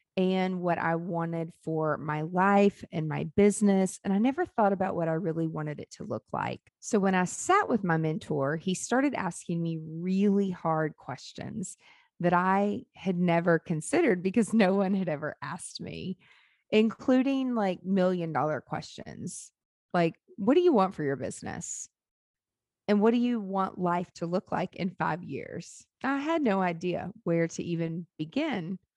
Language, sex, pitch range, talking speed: English, female, 165-210 Hz, 170 wpm